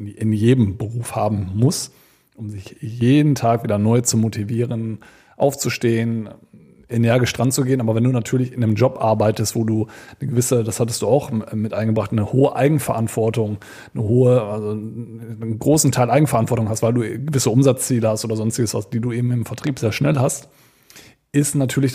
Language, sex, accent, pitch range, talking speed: German, male, German, 115-130 Hz, 175 wpm